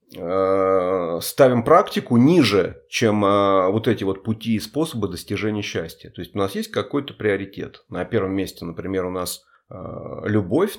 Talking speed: 145 wpm